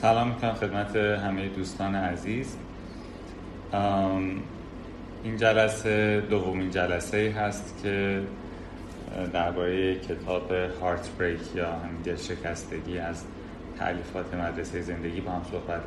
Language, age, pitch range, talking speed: Persian, 30-49, 85-95 Hz, 100 wpm